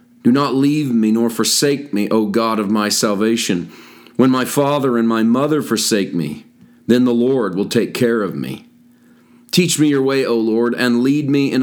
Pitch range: 110-130 Hz